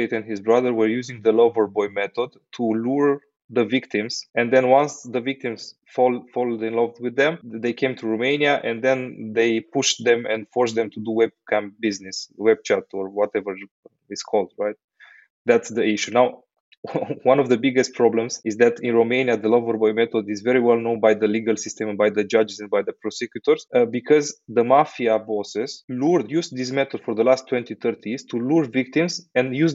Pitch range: 115-140 Hz